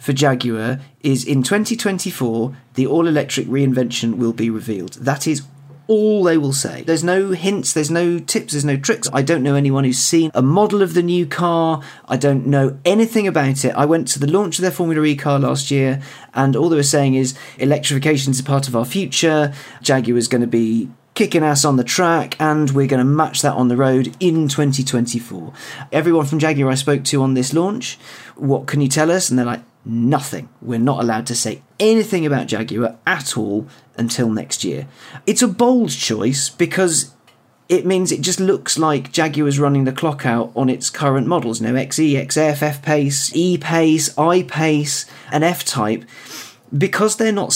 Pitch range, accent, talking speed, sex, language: 130-165 Hz, British, 200 wpm, male, English